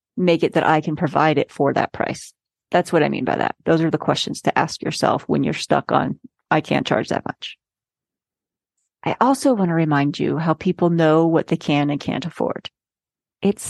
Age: 40-59